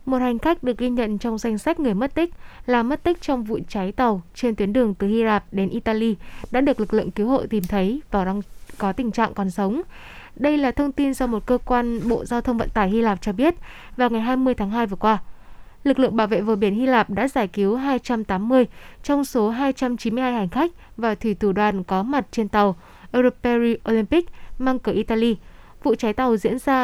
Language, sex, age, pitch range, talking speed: Vietnamese, female, 20-39, 215-255 Hz, 225 wpm